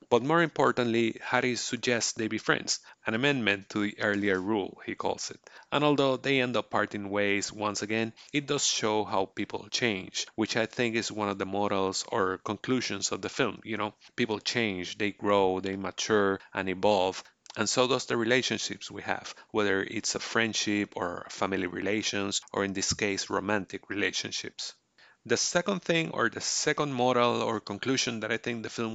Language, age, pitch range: English, 30-49, 100-120 Hz